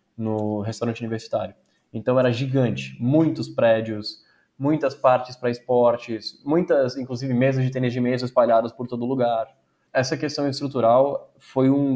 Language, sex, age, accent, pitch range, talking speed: Portuguese, male, 10-29, Brazilian, 120-155 Hz, 140 wpm